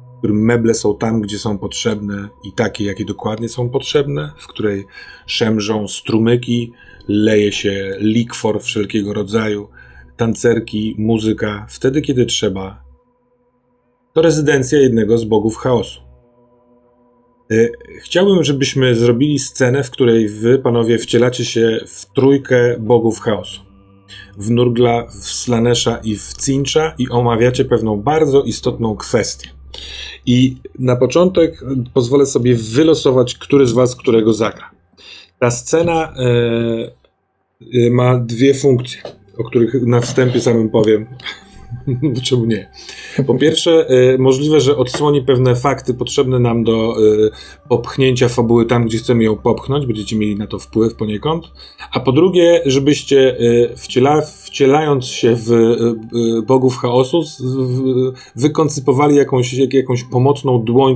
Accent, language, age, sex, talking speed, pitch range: native, Polish, 30-49, male, 125 wpm, 110-130 Hz